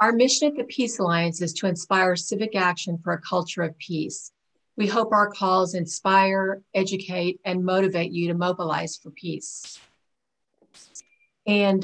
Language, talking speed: English, 150 wpm